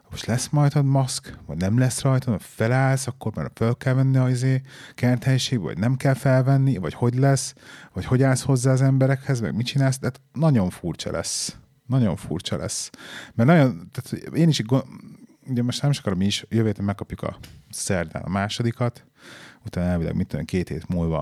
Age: 30-49